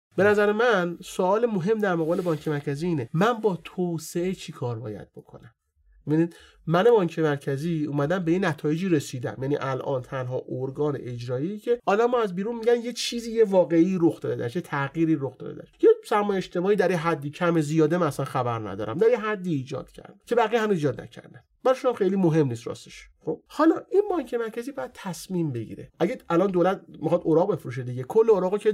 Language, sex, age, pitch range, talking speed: English, male, 30-49, 145-200 Hz, 190 wpm